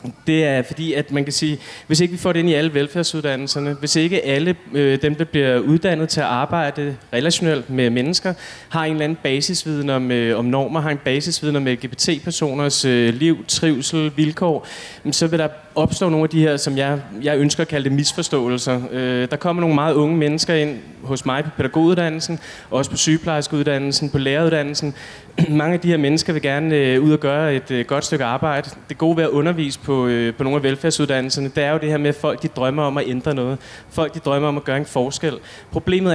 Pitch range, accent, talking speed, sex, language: 135-160 Hz, native, 200 wpm, male, Danish